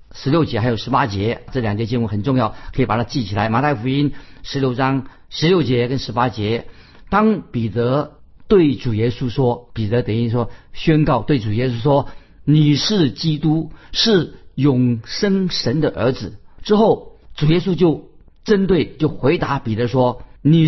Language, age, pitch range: Chinese, 50-69, 115-155 Hz